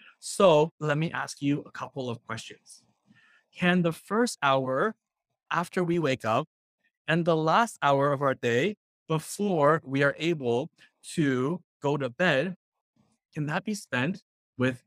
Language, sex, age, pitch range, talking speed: English, male, 30-49, 135-180 Hz, 150 wpm